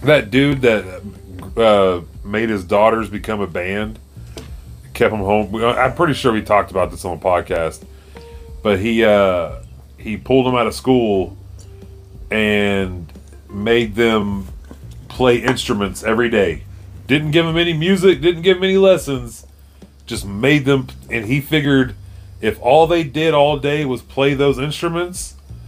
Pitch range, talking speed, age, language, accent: 95-130 Hz, 150 wpm, 30-49, English, American